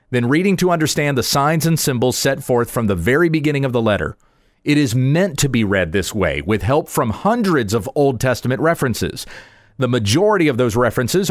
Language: English